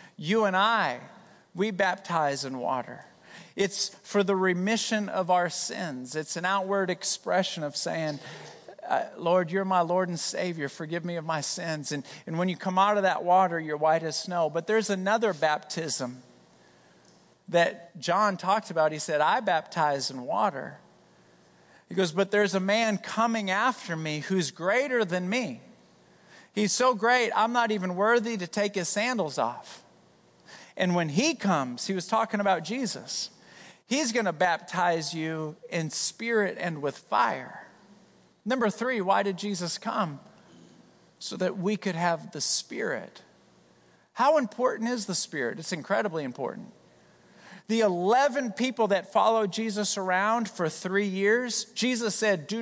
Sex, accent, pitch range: male, American, 160-210 Hz